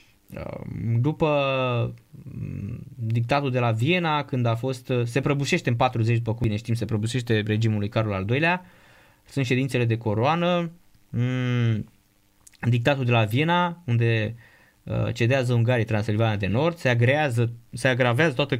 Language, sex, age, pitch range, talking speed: Romanian, male, 20-39, 110-140 Hz, 135 wpm